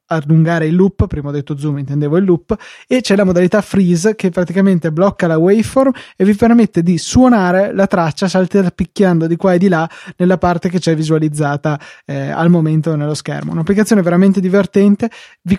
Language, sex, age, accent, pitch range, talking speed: Italian, male, 20-39, native, 160-190 Hz, 185 wpm